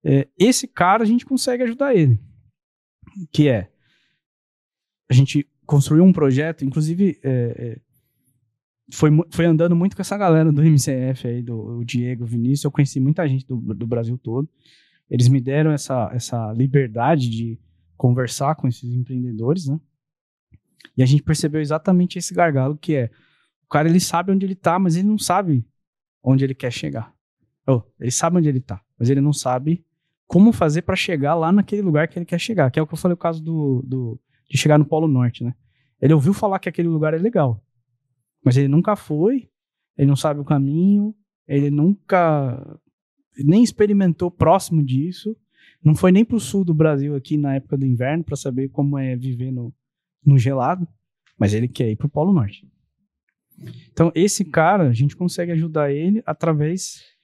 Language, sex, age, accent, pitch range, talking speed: Portuguese, male, 20-39, Brazilian, 130-170 Hz, 180 wpm